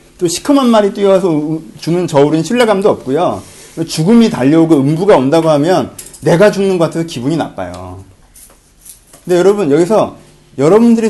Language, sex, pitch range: Korean, male, 145-225 Hz